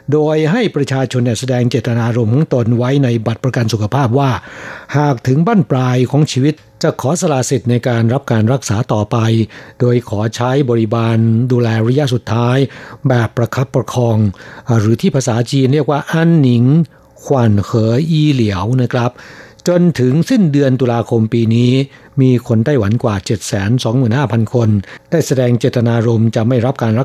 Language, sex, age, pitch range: Thai, male, 60-79, 115-140 Hz